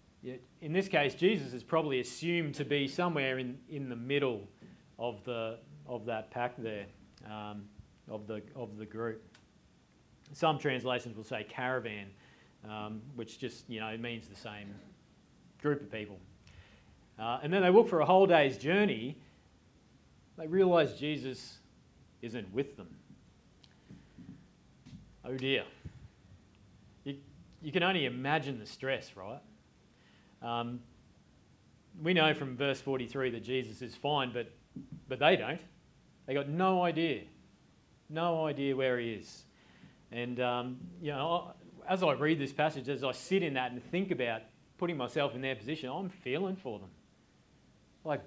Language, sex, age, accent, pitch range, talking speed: English, male, 40-59, Australian, 110-150 Hz, 145 wpm